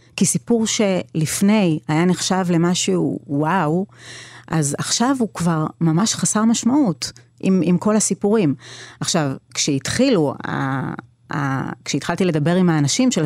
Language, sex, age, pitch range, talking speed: Hebrew, female, 30-49, 155-220 Hz, 120 wpm